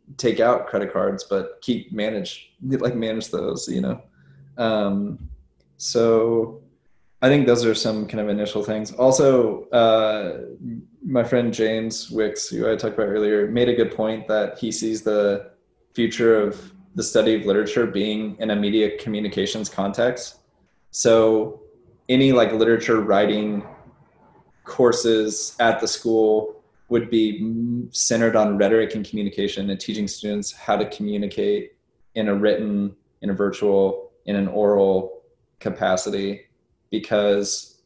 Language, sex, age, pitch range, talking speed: English, male, 20-39, 100-115 Hz, 140 wpm